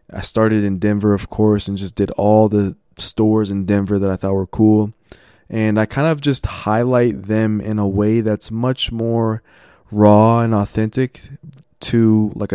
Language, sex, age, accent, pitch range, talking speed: English, male, 20-39, American, 105-115 Hz, 175 wpm